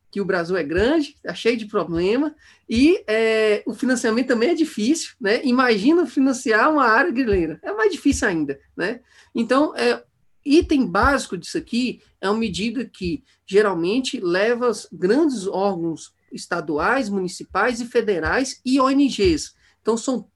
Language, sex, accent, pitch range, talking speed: Portuguese, male, Brazilian, 200-255 Hz, 145 wpm